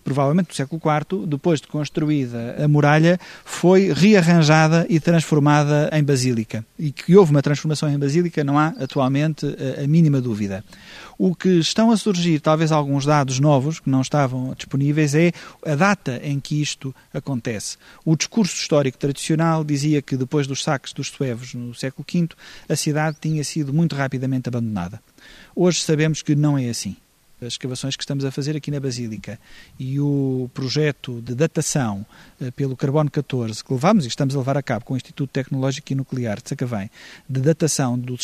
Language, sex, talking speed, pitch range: Portuguese, male, 175 wpm, 130-155 Hz